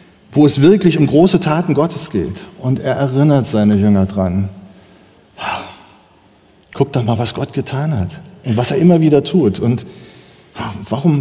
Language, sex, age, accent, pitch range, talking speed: German, male, 50-69, German, 110-175 Hz, 155 wpm